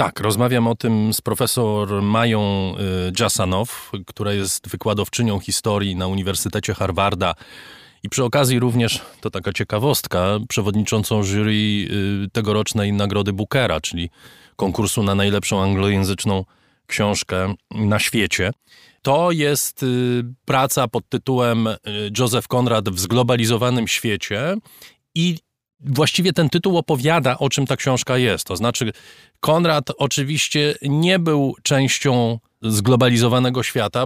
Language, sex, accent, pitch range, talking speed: Polish, male, native, 105-130 Hz, 115 wpm